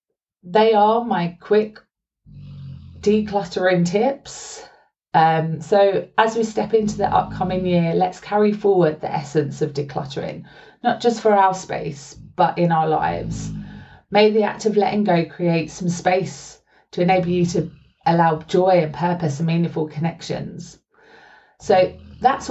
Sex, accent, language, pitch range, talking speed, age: female, British, English, 160-205 Hz, 140 wpm, 30-49